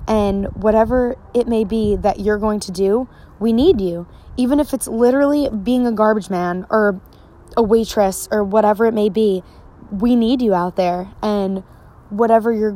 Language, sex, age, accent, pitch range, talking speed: English, female, 20-39, American, 195-230 Hz, 175 wpm